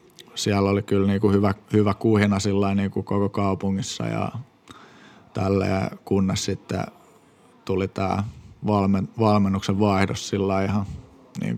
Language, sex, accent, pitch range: Finnish, male, native, 95-105 Hz